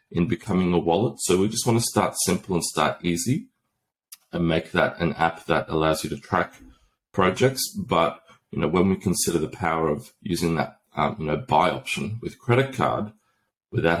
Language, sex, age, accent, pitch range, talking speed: English, male, 30-49, Australian, 75-90 Hz, 195 wpm